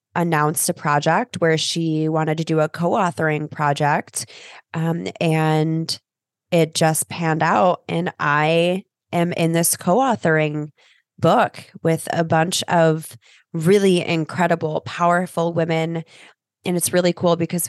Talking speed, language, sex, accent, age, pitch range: 130 wpm, English, female, American, 20-39, 155-175 Hz